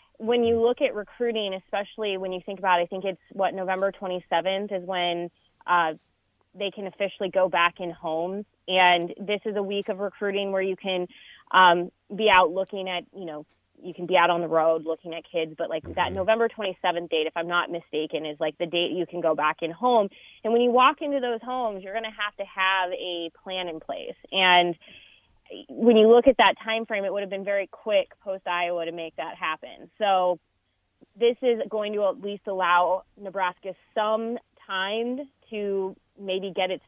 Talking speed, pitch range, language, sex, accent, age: 200 wpm, 175-205 Hz, English, female, American, 20-39